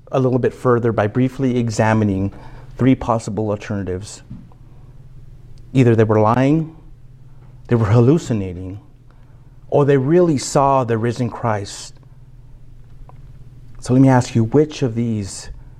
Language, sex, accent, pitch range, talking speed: English, male, American, 115-130 Hz, 120 wpm